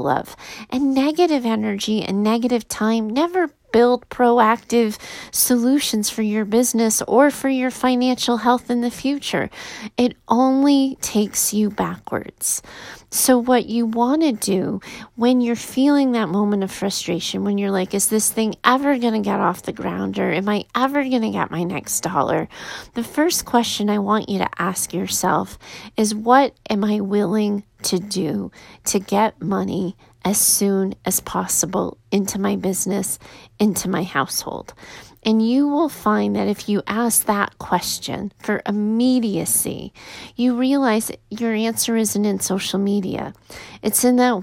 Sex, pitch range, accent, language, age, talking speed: female, 205-245 Hz, American, English, 30-49, 155 wpm